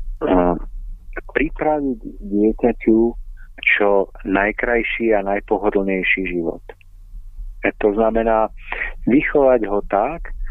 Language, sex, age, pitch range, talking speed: Slovak, male, 40-59, 90-115 Hz, 80 wpm